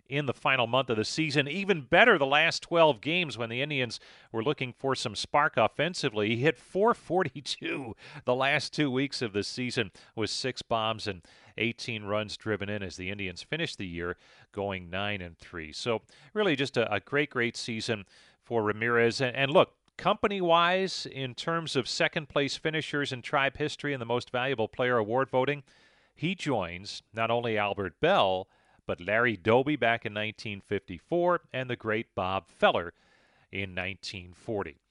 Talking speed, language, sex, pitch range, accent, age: 170 wpm, English, male, 105-145 Hz, American, 40-59